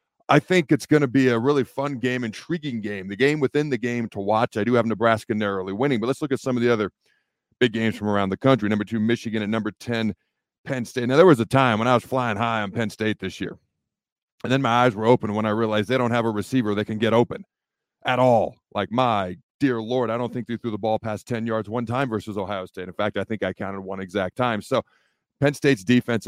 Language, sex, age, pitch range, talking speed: English, male, 40-59, 105-130 Hz, 260 wpm